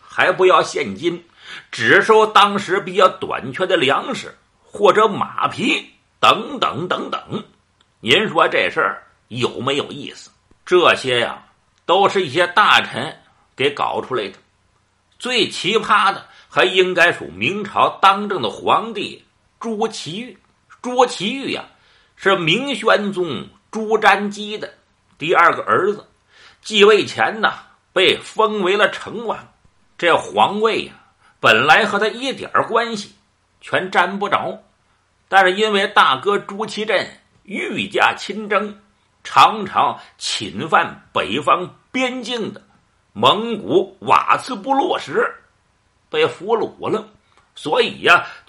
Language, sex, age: Chinese, male, 50-69